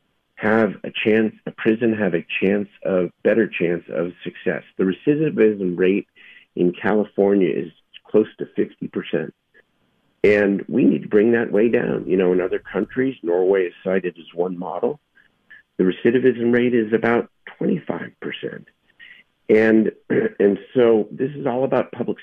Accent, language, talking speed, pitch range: American, English, 155 wpm, 95-115 Hz